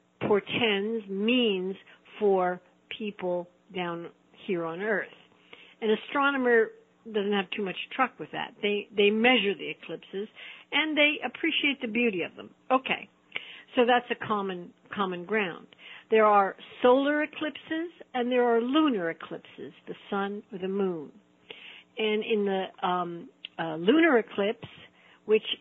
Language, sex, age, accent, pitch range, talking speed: English, female, 60-79, American, 185-240 Hz, 135 wpm